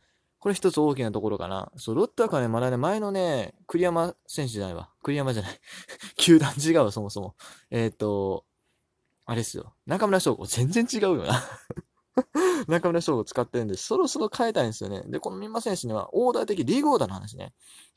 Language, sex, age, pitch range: Japanese, male, 20-39, 110-170 Hz